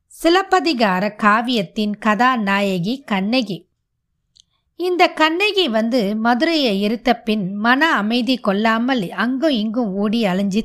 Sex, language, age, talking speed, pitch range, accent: female, Tamil, 20-39, 95 wpm, 200-270 Hz, native